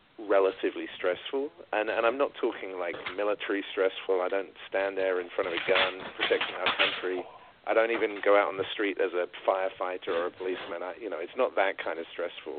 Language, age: English, 40-59